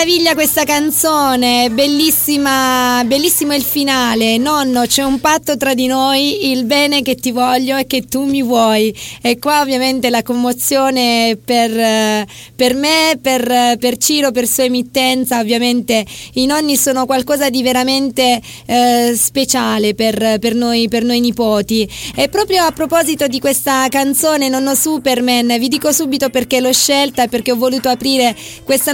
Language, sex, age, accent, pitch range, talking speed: Italian, female, 20-39, native, 245-280 Hz, 155 wpm